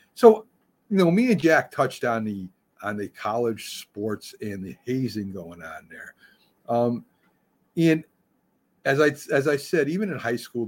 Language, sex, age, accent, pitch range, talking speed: English, male, 50-69, American, 105-145 Hz, 170 wpm